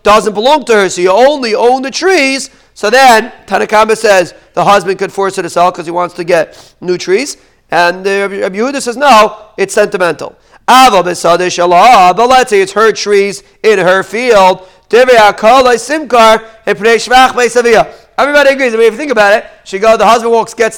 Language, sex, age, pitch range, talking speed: English, male, 40-59, 190-235 Hz, 175 wpm